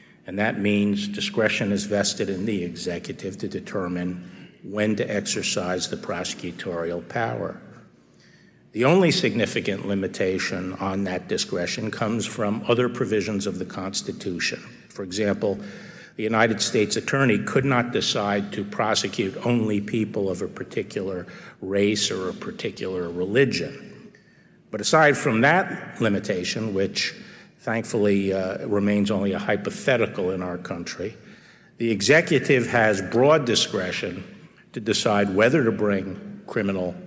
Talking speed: 125 wpm